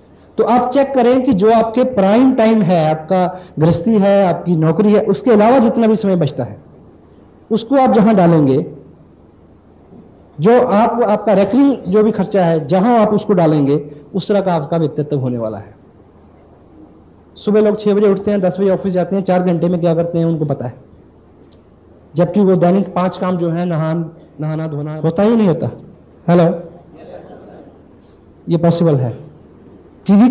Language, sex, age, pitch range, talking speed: Hindi, male, 50-69, 145-200 Hz, 170 wpm